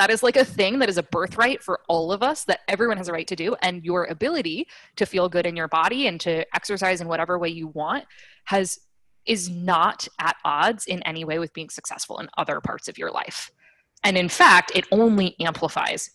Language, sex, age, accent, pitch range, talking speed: English, female, 20-39, American, 170-215 Hz, 225 wpm